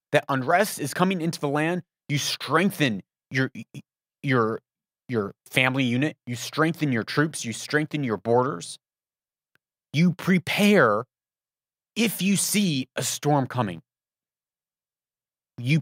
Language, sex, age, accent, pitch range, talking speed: English, male, 30-49, American, 120-165 Hz, 120 wpm